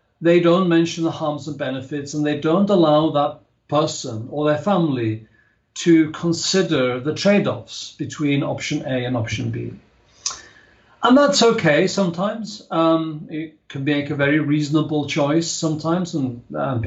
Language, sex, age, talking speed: English, male, 50-69, 145 wpm